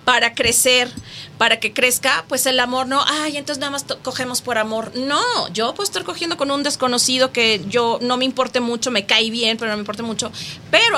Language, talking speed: Spanish, 215 wpm